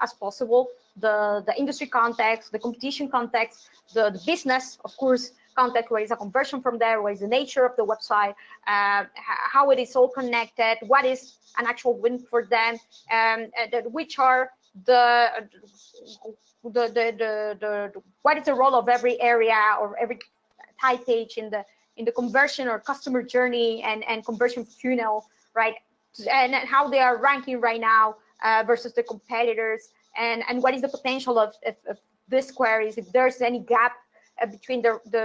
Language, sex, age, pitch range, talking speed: English, female, 20-39, 220-260 Hz, 180 wpm